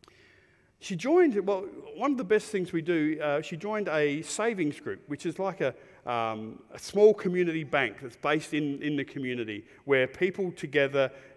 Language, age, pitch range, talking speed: English, 40-59, 130-165 Hz, 180 wpm